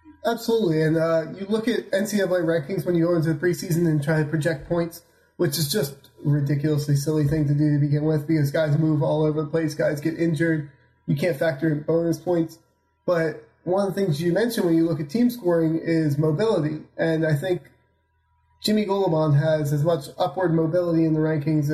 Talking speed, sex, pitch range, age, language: 205 wpm, male, 155-185 Hz, 20-39, English